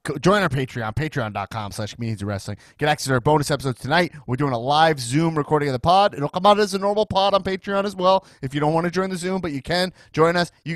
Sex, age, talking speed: male, 30-49, 255 wpm